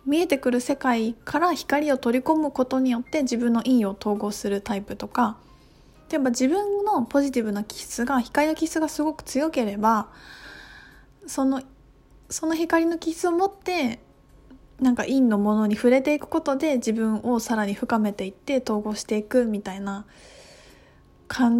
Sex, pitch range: female, 220-290 Hz